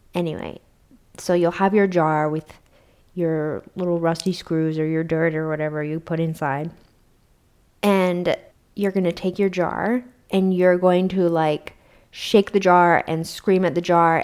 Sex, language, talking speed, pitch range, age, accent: female, English, 165 wpm, 165-190 Hz, 20-39, American